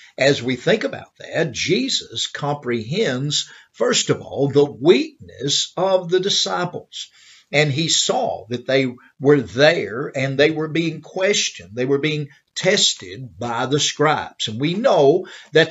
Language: English